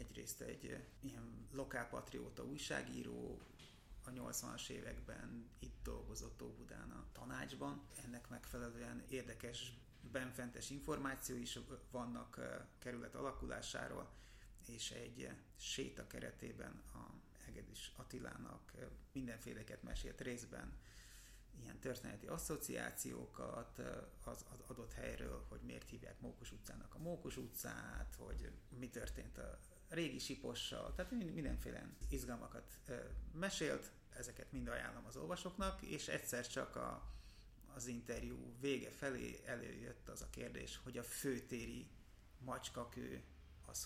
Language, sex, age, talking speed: Hungarian, male, 30-49, 105 wpm